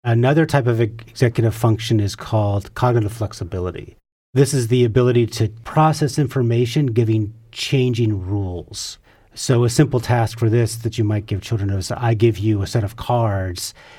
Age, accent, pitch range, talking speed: 40-59, American, 105-120 Hz, 165 wpm